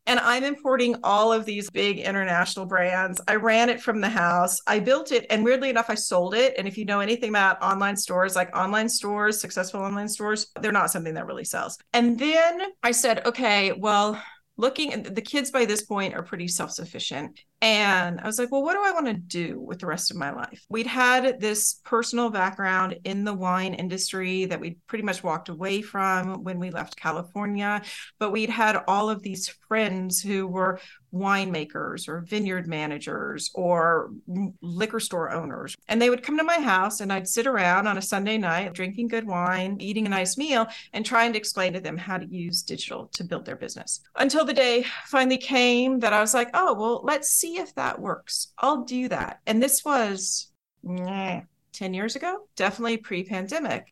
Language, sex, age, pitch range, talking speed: English, female, 40-59, 185-235 Hz, 200 wpm